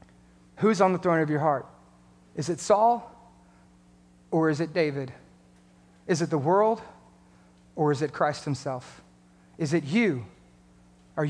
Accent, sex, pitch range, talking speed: American, male, 125-190 Hz, 145 wpm